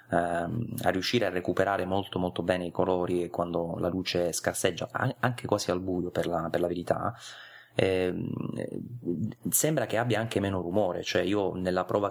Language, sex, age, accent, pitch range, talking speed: Italian, male, 30-49, native, 90-110 Hz, 165 wpm